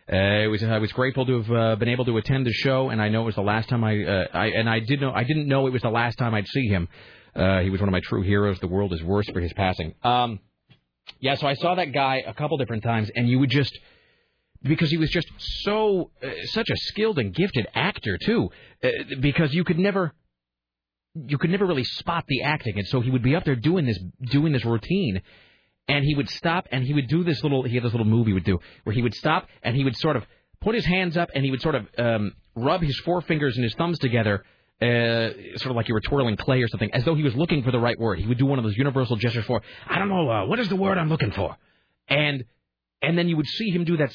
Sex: male